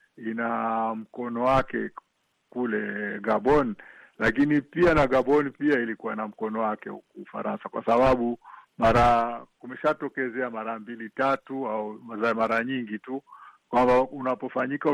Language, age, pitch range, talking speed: Swahili, 50-69, 115-140 Hz, 115 wpm